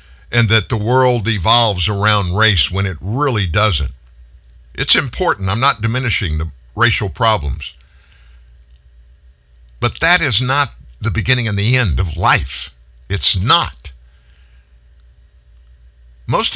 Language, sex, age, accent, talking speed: English, male, 50-69, American, 120 wpm